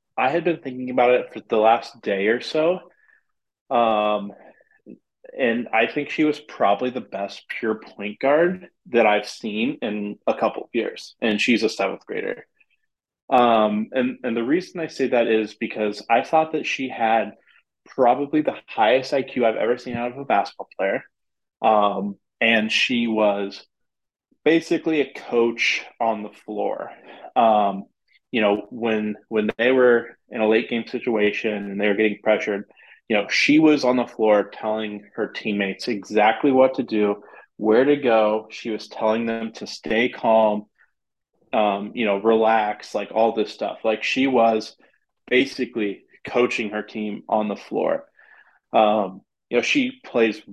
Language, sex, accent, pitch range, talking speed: English, male, American, 105-130 Hz, 165 wpm